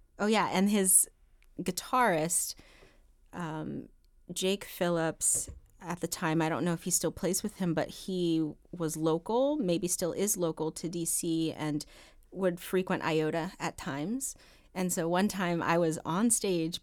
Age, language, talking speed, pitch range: 30-49, English, 155 wpm, 165-190 Hz